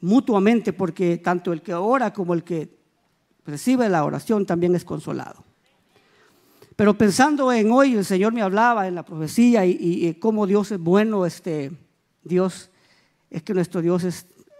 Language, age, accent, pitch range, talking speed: Spanish, 50-69, American, 175-220 Hz, 165 wpm